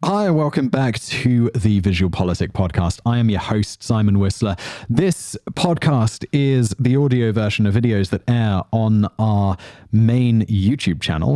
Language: English